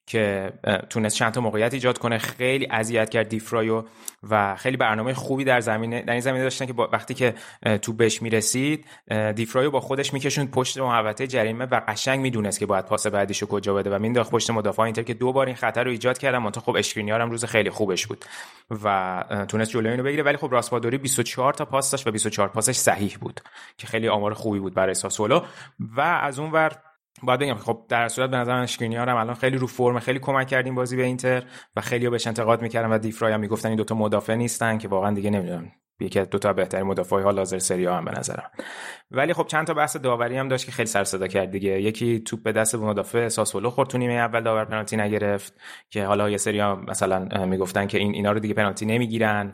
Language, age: Persian, 30-49